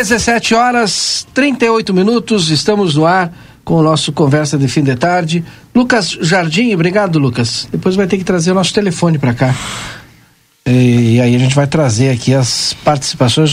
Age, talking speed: 50-69, 170 wpm